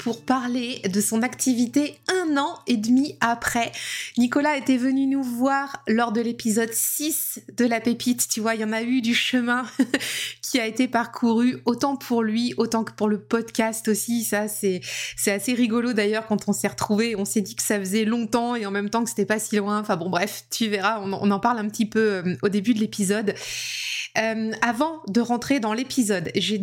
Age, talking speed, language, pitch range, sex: 20-39, 205 wpm, French, 205-255 Hz, female